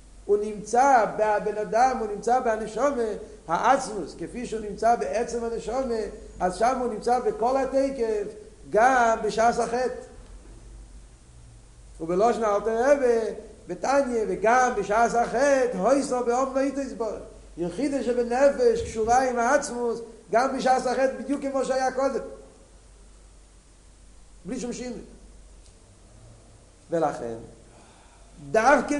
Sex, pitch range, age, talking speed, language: male, 195-250 Hz, 50-69, 105 wpm, Hebrew